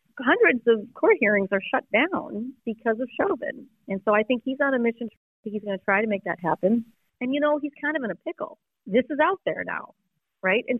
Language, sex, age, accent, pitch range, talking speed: English, female, 30-49, American, 180-230 Hz, 245 wpm